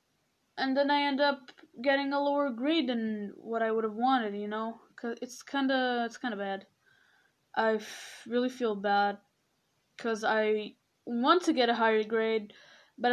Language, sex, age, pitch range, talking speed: English, female, 10-29, 215-265 Hz, 175 wpm